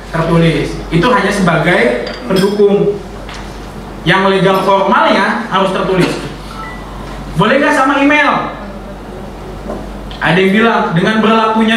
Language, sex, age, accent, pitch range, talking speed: Indonesian, male, 30-49, native, 180-235 Hz, 95 wpm